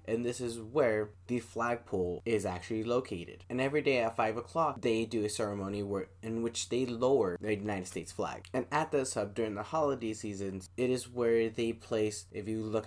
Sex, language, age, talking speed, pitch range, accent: male, English, 10-29, 205 wpm, 100-125 Hz, American